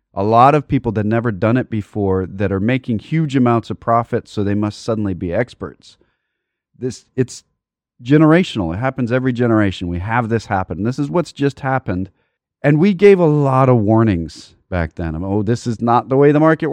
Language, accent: English, American